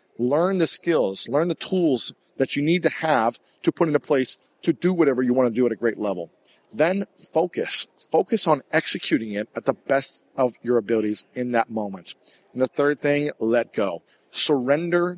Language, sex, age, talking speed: English, male, 40-59, 190 wpm